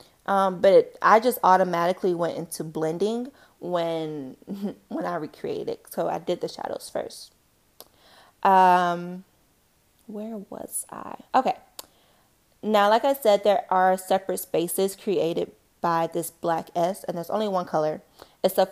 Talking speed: 135 wpm